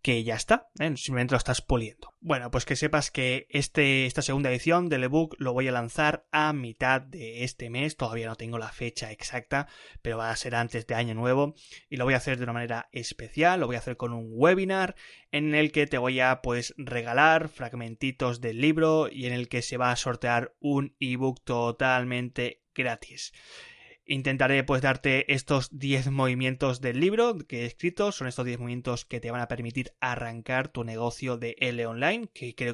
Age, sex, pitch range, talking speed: 20-39, male, 120-140 Hz, 200 wpm